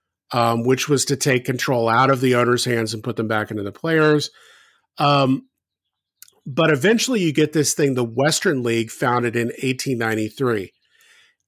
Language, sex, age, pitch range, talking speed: English, male, 50-69, 115-150 Hz, 155 wpm